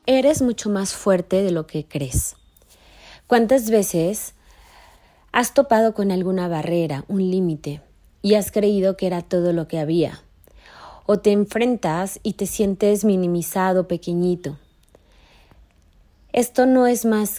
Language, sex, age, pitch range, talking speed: Spanish, female, 30-49, 155-200 Hz, 130 wpm